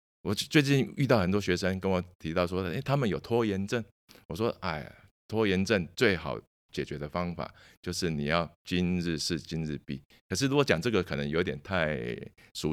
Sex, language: male, Chinese